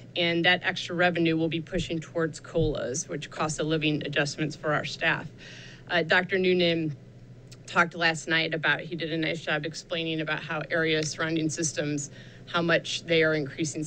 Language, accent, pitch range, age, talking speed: English, American, 150-175 Hz, 30-49, 175 wpm